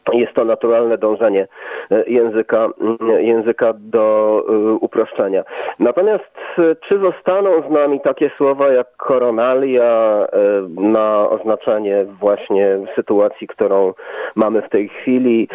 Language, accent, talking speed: Polish, native, 100 wpm